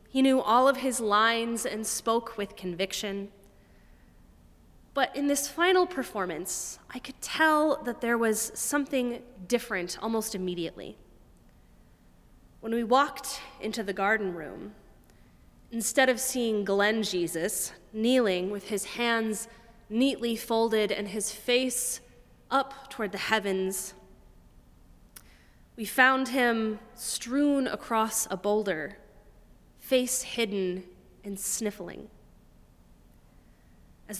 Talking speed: 110 wpm